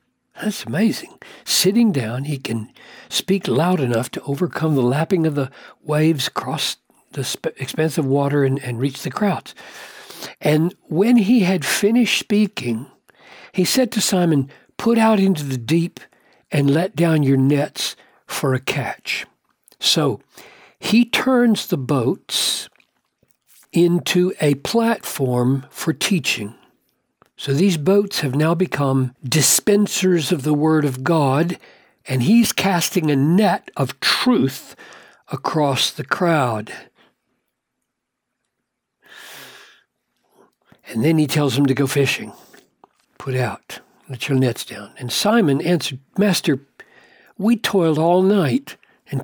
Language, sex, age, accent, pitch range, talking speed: English, male, 60-79, American, 135-195 Hz, 125 wpm